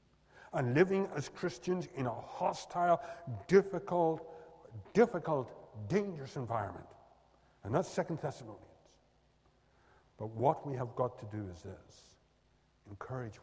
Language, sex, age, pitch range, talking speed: English, male, 60-79, 95-120 Hz, 110 wpm